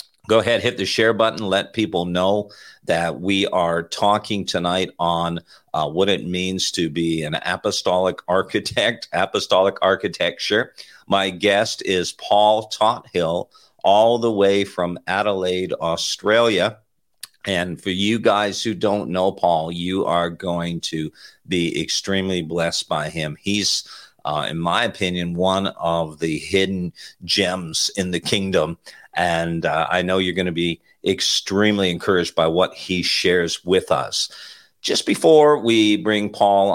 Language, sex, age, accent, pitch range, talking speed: English, male, 50-69, American, 85-100 Hz, 145 wpm